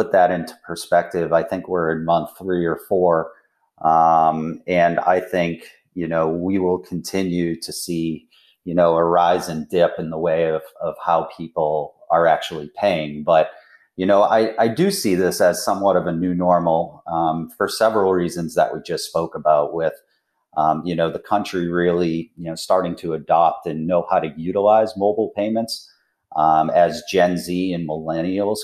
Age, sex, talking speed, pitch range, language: 40-59, male, 180 wpm, 80-90 Hz, English